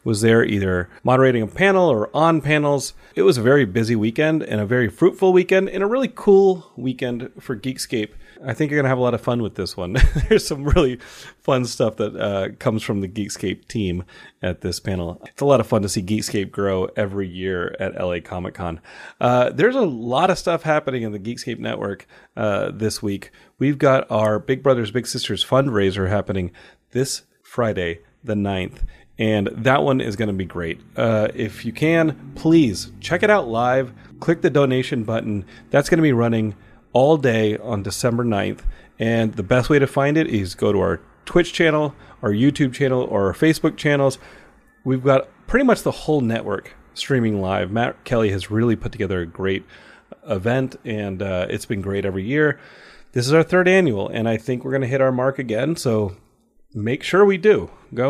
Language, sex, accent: English, male, American